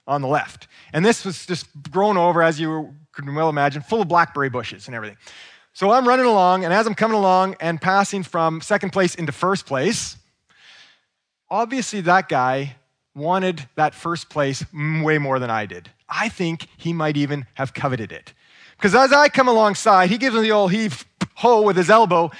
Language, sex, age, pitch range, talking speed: English, male, 30-49, 135-190 Hz, 195 wpm